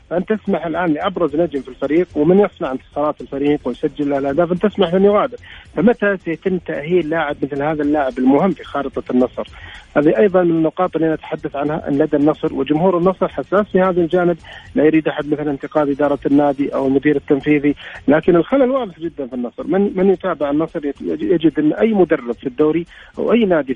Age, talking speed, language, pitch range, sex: 40-59, 180 wpm, Arabic, 145-180 Hz, male